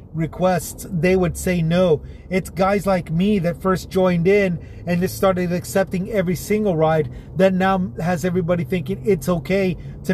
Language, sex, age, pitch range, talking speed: English, male, 30-49, 160-195 Hz, 165 wpm